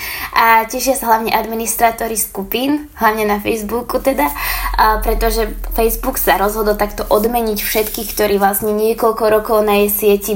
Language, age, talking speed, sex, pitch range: English, 20-39, 140 wpm, female, 195-225 Hz